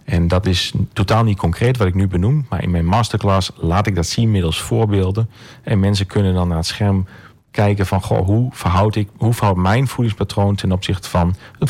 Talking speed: 200 wpm